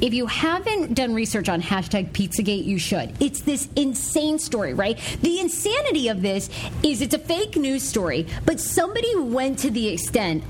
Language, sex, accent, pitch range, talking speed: English, female, American, 200-275 Hz, 175 wpm